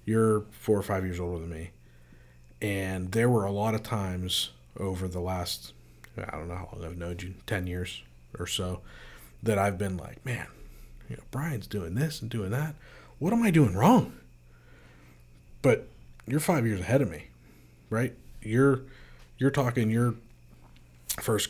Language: English